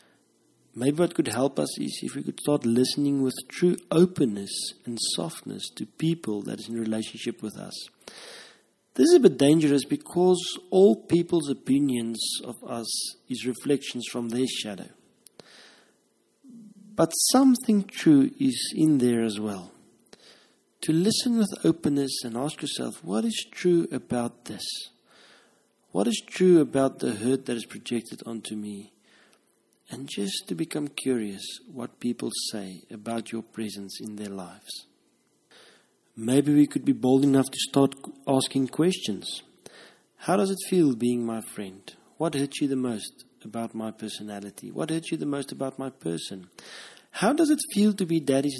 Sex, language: male, English